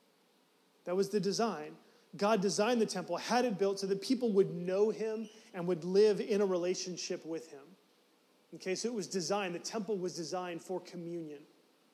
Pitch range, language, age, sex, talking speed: 180-220 Hz, English, 30-49, male, 180 wpm